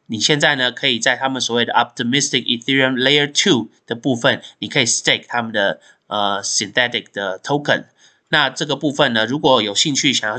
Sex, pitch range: male, 115-155 Hz